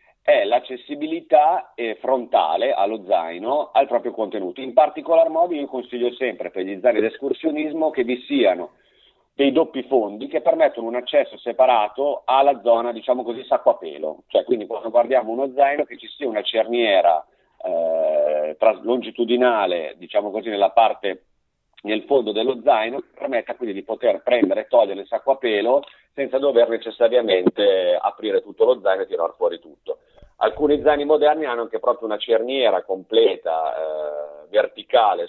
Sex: male